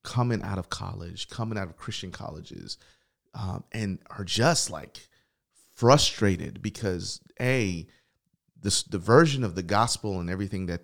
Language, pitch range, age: English, 100-140 Hz, 30-49